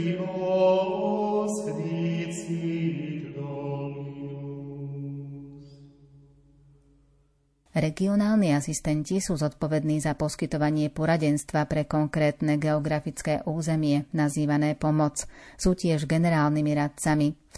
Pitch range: 150-165 Hz